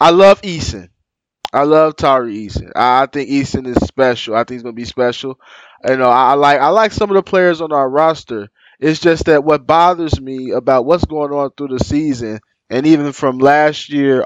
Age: 20-39